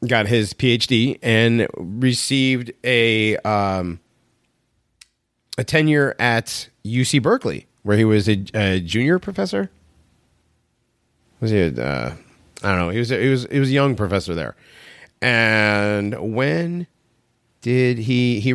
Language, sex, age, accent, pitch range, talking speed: English, male, 30-49, American, 95-130 Hz, 135 wpm